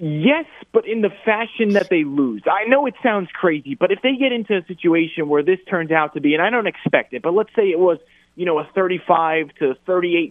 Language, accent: English, American